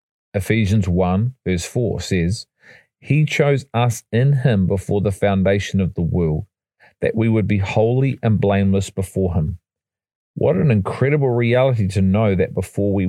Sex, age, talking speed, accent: male, 40-59, 155 wpm, Australian